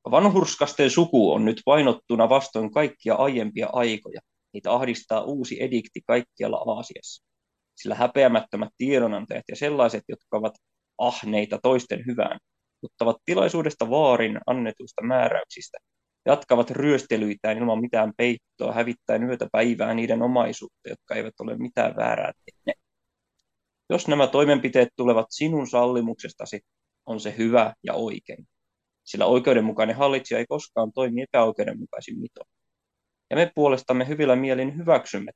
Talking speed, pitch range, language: 120 wpm, 110-130 Hz, Finnish